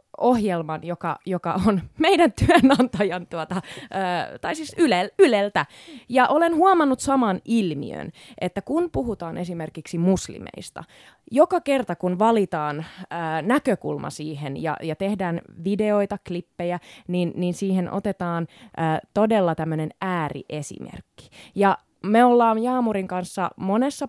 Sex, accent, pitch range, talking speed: female, native, 170-240 Hz, 105 wpm